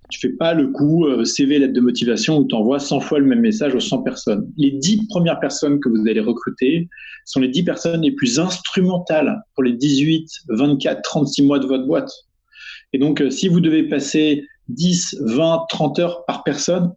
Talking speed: 200 wpm